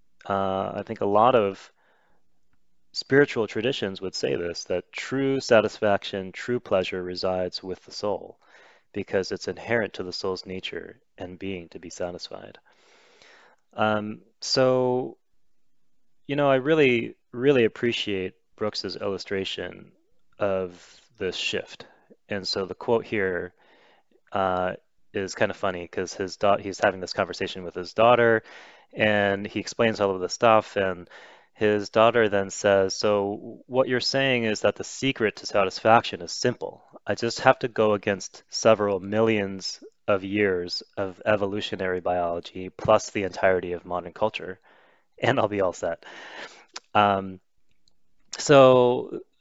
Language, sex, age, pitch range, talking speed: English, male, 30-49, 95-115 Hz, 140 wpm